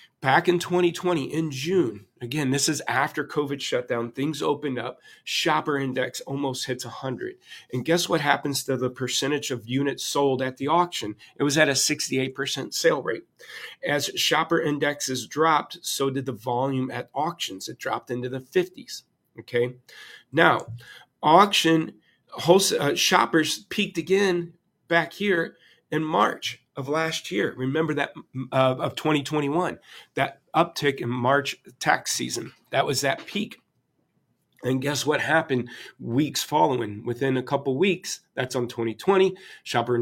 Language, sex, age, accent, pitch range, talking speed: English, male, 40-59, American, 130-160 Hz, 145 wpm